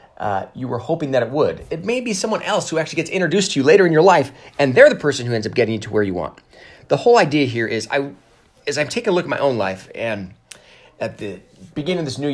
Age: 30-49